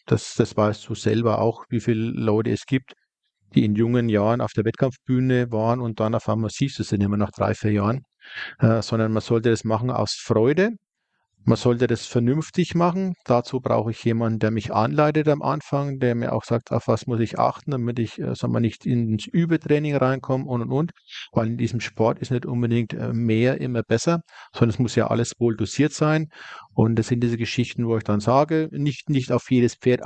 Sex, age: male, 50-69